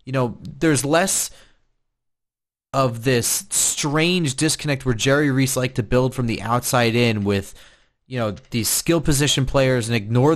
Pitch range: 115-140 Hz